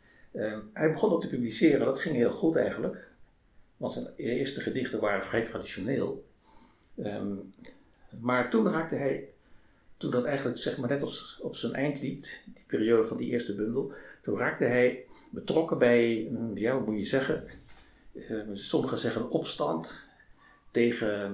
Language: Dutch